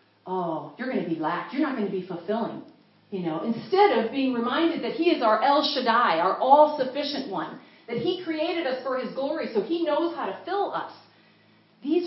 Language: English